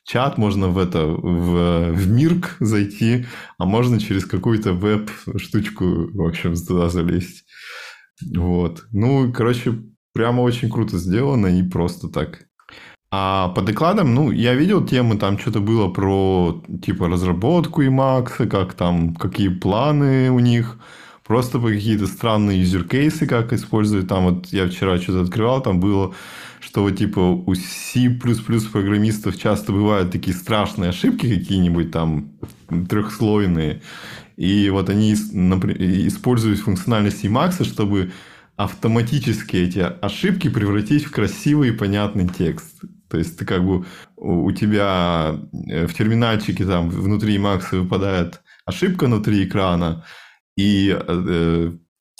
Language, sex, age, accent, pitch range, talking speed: Russian, male, 20-39, native, 90-115 Hz, 130 wpm